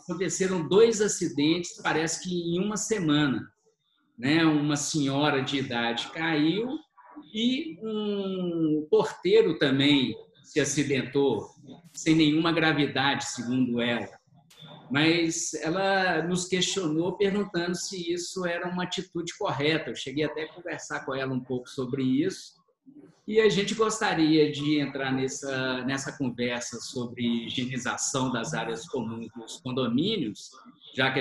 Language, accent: Portuguese, Brazilian